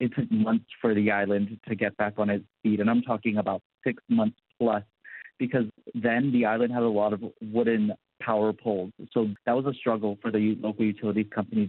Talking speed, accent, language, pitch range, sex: 205 wpm, American, English, 105-115 Hz, male